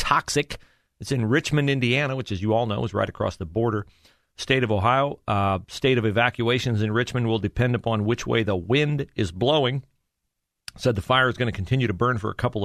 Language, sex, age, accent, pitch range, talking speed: English, male, 40-59, American, 100-130 Hz, 215 wpm